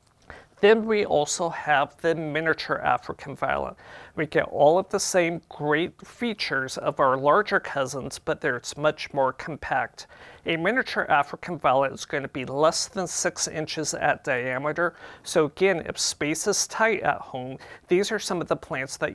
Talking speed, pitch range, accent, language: 165 wpm, 140-180 Hz, American, English